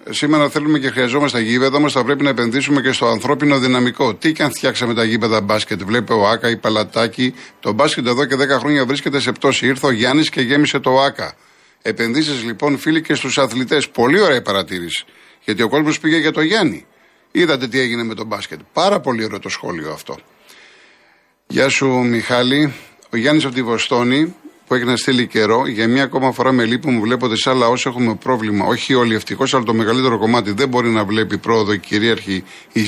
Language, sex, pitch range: Greek, male, 115-140 Hz